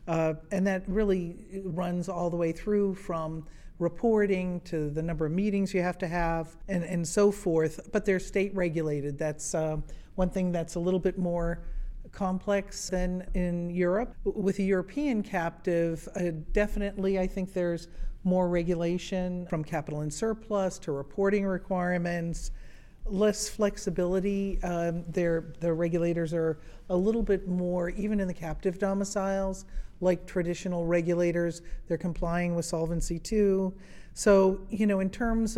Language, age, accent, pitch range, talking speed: English, 50-69, American, 165-195 Hz, 145 wpm